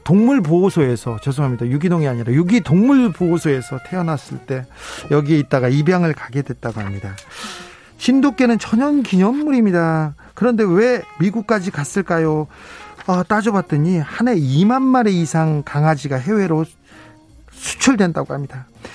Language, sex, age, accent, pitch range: Korean, male, 40-59, native, 140-190 Hz